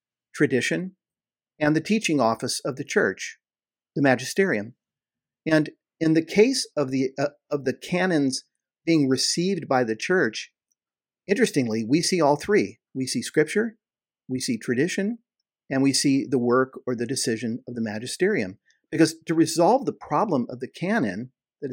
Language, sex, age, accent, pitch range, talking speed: English, male, 50-69, American, 130-165 Hz, 155 wpm